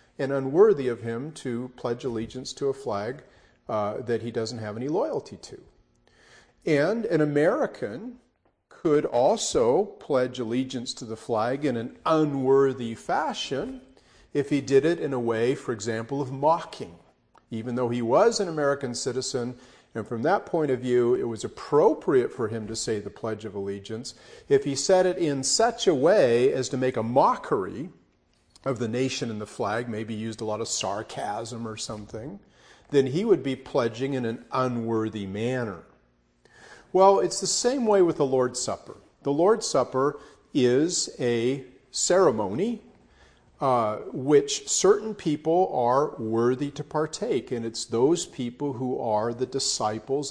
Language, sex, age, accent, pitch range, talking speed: English, male, 40-59, American, 115-145 Hz, 160 wpm